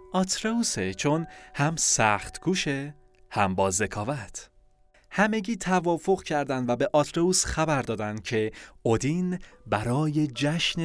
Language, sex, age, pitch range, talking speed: Persian, male, 30-49, 110-155 Hz, 110 wpm